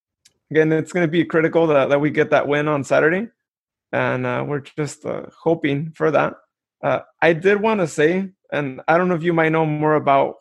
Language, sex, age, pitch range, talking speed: English, male, 20-39, 140-160 Hz, 220 wpm